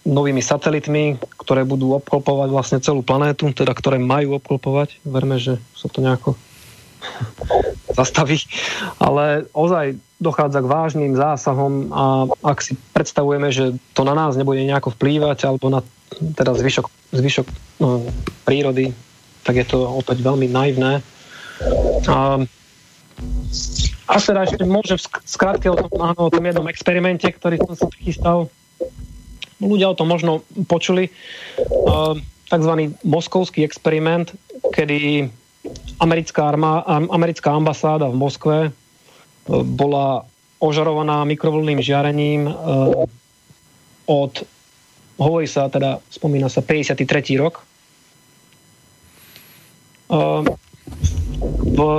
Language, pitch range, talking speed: Slovak, 135-165 Hz, 105 wpm